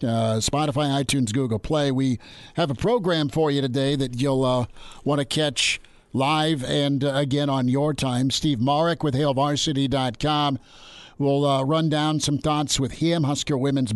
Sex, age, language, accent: male, 50-69, English, American